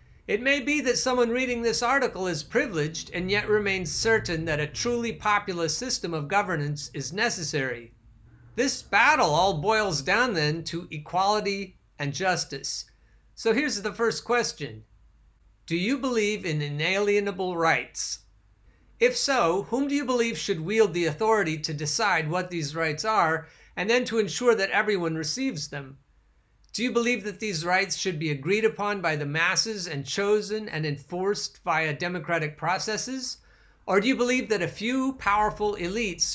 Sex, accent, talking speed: male, American, 160 wpm